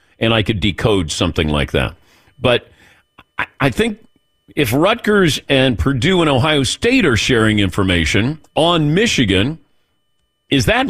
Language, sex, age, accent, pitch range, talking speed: English, male, 50-69, American, 100-150 Hz, 130 wpm